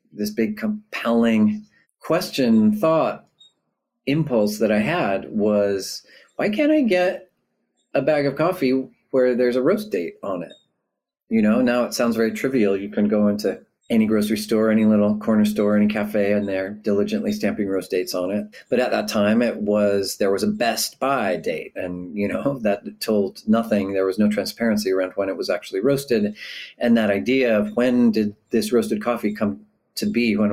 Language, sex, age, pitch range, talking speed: English, male, 40-59, 100-140 Hz, 185 wpm